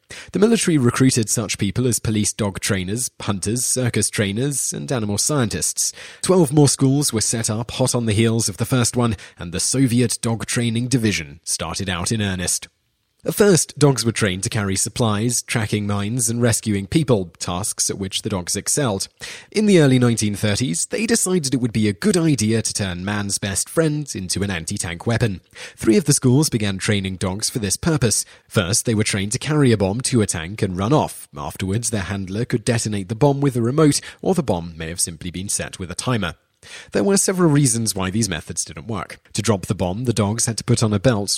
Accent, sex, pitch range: British, male, 95-125 Hz